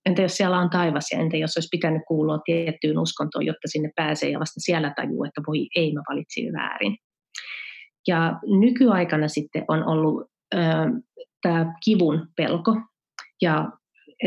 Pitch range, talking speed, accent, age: 155-175 Hz, 150 wpm, native, 30-49